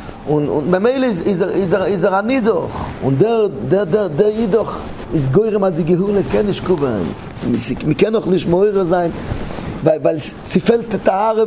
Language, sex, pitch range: English, male, 155-220 Hz